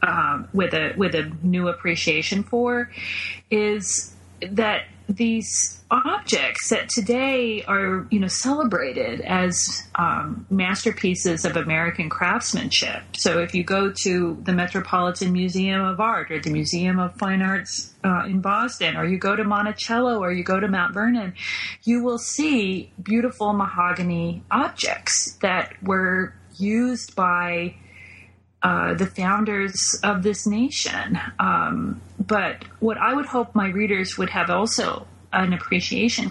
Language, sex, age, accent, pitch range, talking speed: English, female, 30-49, American, 175-220 Hz, 135 wpm